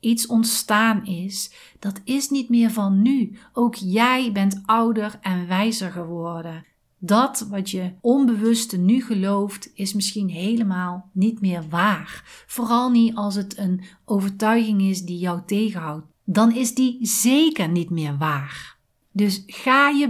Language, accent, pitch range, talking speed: Dutch, Dutch, 190-235 Hz, 145 wpm